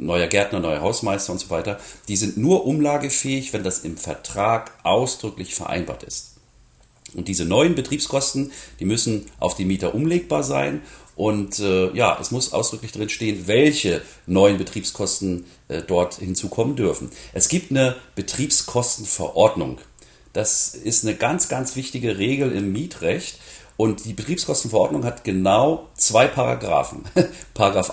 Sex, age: male, 40-59